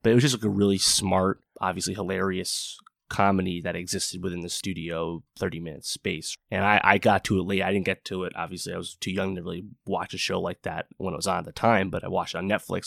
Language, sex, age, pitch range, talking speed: English, male, 20-39, 95-105 Hz, 255 wpm